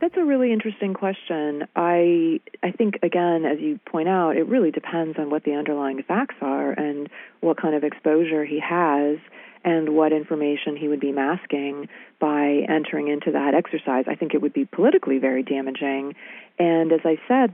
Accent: American